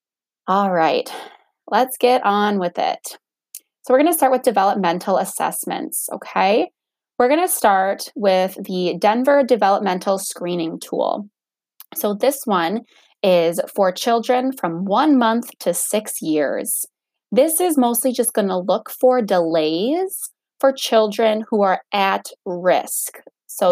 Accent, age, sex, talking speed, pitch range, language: American, 20-39, female, 135 wpm, 185-245 Hz, English